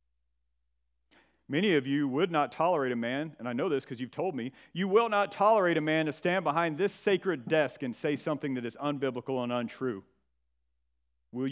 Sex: male